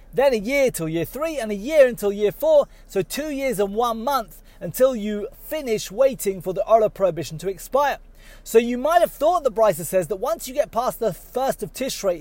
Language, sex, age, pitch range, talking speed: English, male, 30-49, 175-260 Hz, 220 wpm